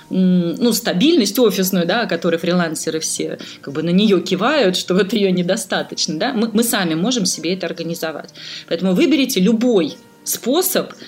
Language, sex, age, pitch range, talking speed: Russian, female, 20-39, 170-230 Hz, 155 wpm